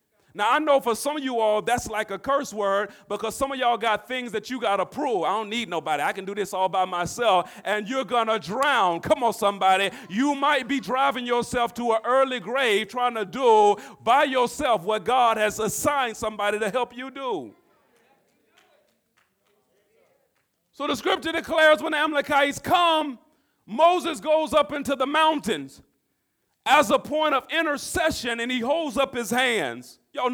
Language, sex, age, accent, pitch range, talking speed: English, male, 40-59, American, 230-295 Hz, 180 wpm